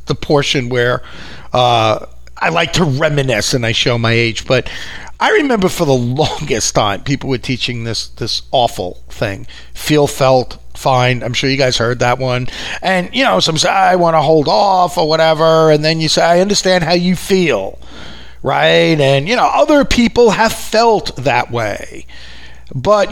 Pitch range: 115-185 Hz